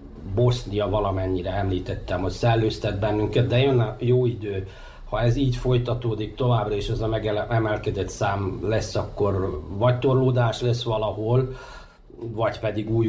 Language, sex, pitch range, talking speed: Hungarian, male, 100-120 Hz, 140 wpm